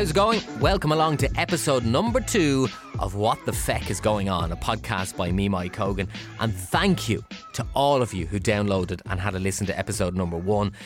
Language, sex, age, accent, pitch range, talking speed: English, male, 20-39, Irish, 95-125 Hz, 210 wpm